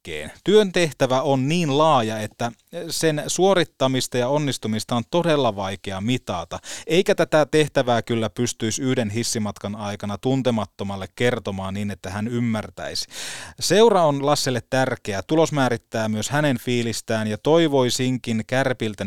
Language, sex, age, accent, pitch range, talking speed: Finnish, male, 30-49, native, 105-135 Hz, 125 wpm